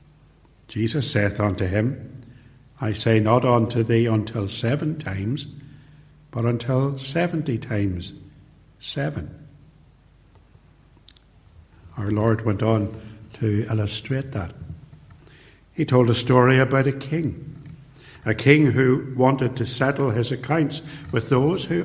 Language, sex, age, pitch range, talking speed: English, male, 60-79, 115-145 Hz, 115 wpm